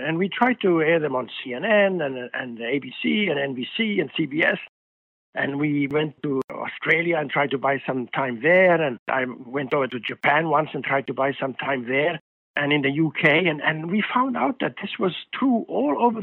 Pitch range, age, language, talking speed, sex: 135-160 Hz, 60-79, English, 205 wpm, male